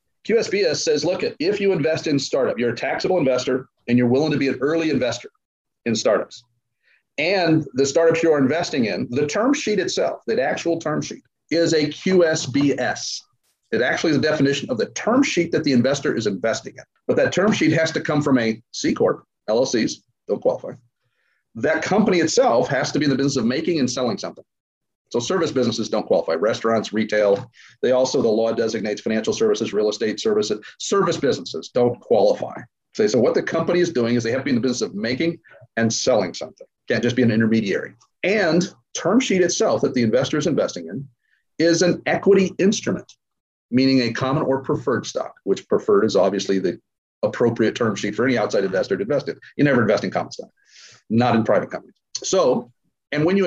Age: 40-59